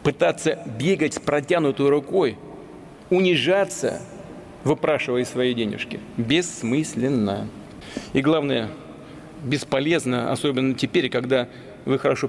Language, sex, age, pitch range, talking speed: Russian, male, 40-59, 135-170 Hz, 90 wpm